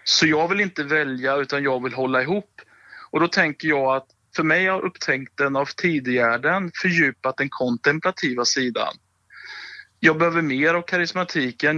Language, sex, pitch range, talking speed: Swedish, male, 125-155 Hz, 155 wpm